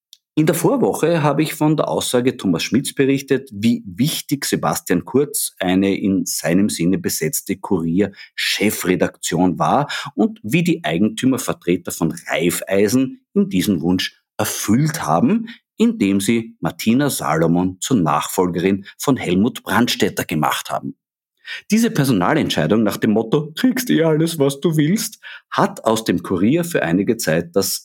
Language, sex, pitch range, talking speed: German, male, 95-160 Hz, 135 wpm